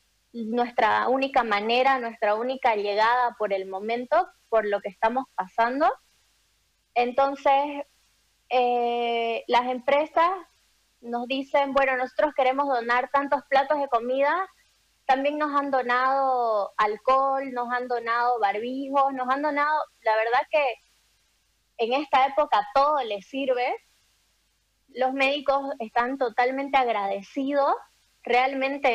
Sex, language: female, Spanish